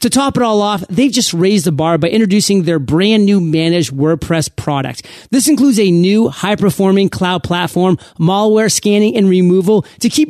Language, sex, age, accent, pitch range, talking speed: English, male, 40-59, American, 165-215 Hz, 180 wpm